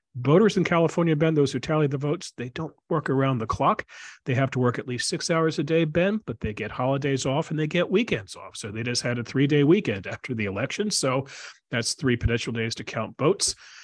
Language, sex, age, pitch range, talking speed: English, male, 40-59, 120-165 Hz, 240 wpm